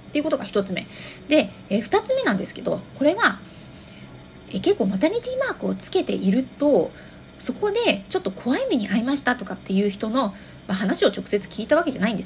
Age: 30-49